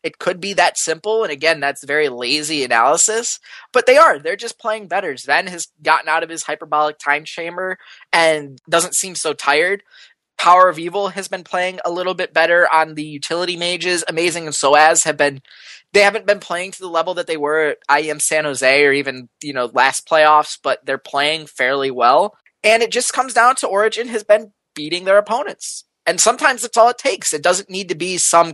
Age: 20-39